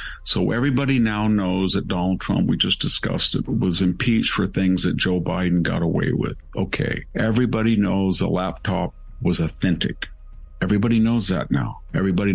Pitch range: 90-105 Hz